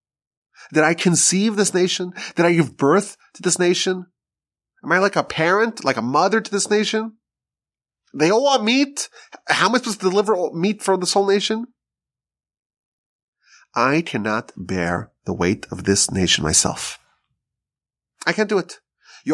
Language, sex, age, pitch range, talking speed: English, male, 30-49, 125-200 Hz, 160 wpm